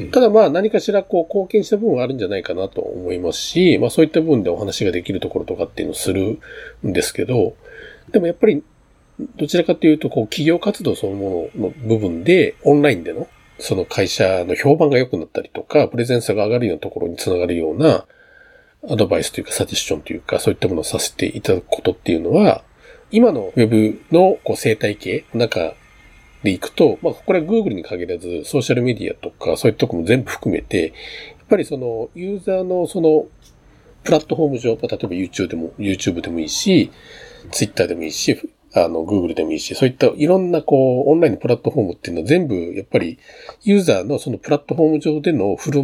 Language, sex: Japanese, male